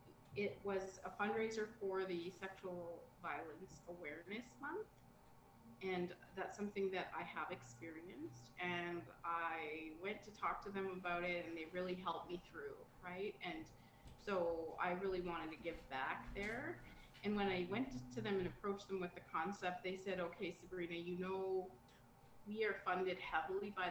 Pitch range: 165-195 Hz